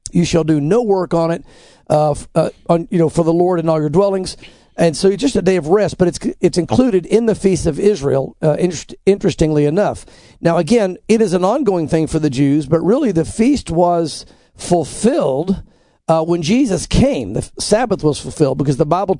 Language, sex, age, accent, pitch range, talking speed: English, male, 50-69, American, 165-205 Hz, 210 wpm